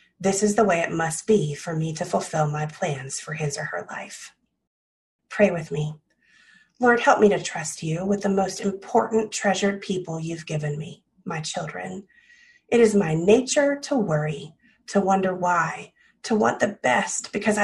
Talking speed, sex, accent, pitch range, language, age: 175 wpm, female, American, 165-220 Hz, English, 30-49